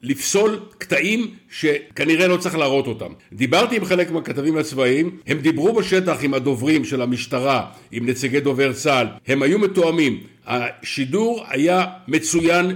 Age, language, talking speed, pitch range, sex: 60-79, Hebrew, 135 wpm, 140-185 Hz, male